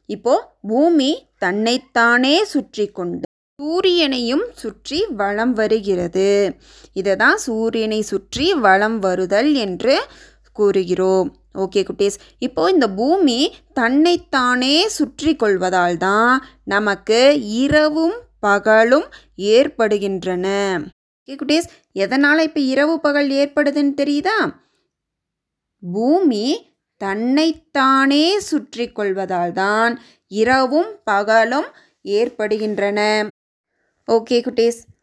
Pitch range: 205-300 Hz